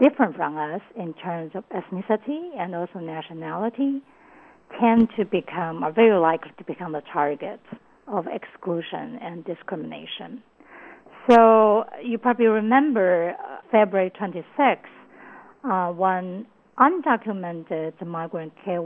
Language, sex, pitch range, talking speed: English, female, 175-250 Hz, 110 wpm